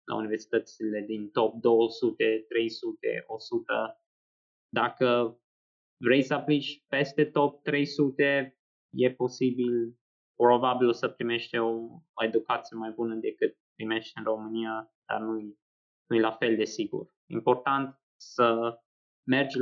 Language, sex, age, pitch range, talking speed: Romanian, male, 20-39, 115-135 Hz, 110 wpm